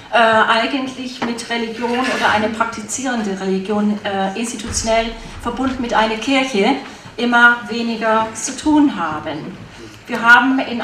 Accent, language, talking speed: German, German, 120 wpm